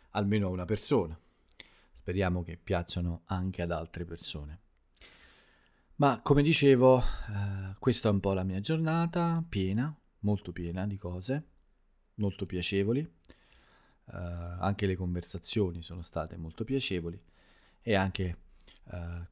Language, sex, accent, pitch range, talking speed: Italian, male, native, 85-105 Hz, 125 wpm